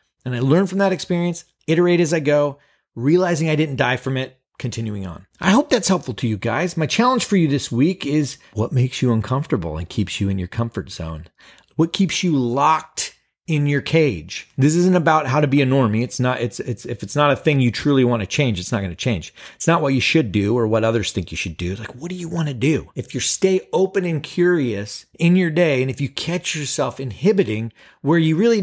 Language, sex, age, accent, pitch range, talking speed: English, male, 30-49, American, 120-180 Hz, 240 wpm